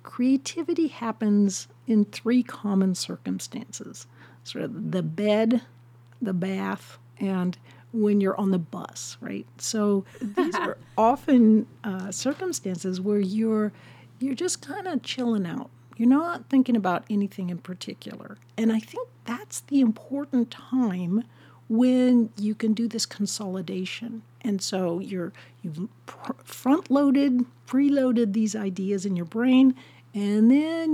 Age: 60-79